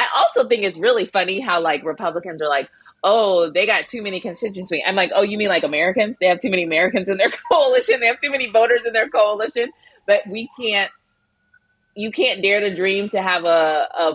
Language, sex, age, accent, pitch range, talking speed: English, female, 30-49, American, 155-200 Hz, 215 wpm